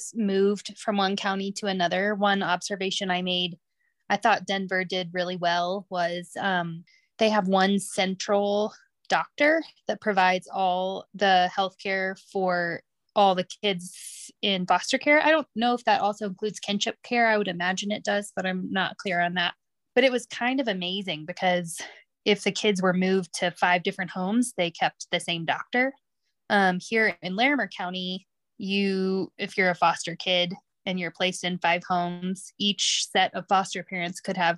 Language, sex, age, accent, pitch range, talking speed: English, female, 20-39, American, 180-210 Hz, 175 wpm